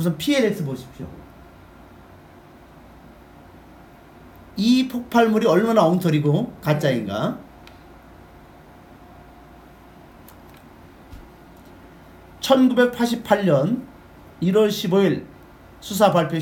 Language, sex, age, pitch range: Korean, male, 40-59, 150-230 Hz